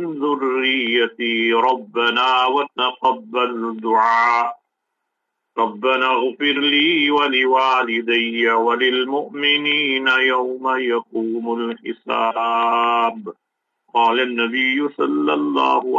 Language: English